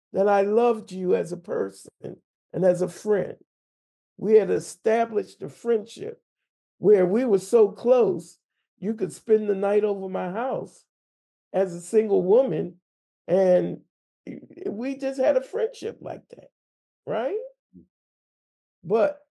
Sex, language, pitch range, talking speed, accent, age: male, English, 185-280 Hz, 135 wpm, American, 40-59